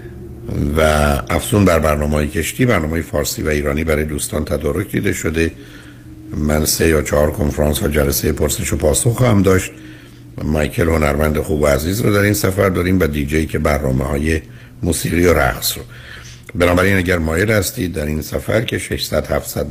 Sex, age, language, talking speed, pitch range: male, 60-79, Persian, 165 wpm, 75-105 Hz